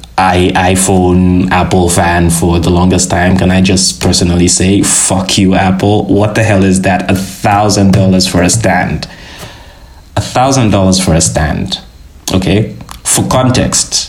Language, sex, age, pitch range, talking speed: English, male, 20-39, 85-95 Hz, 130 wpm